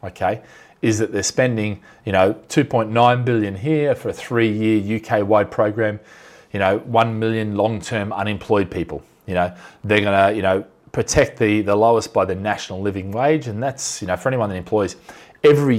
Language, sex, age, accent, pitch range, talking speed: English, male, 30-49, Australian, 95-125 Hz, 180 wpm